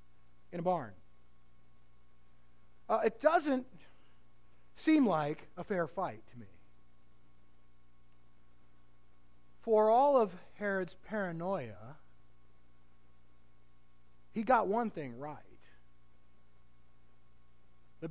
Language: English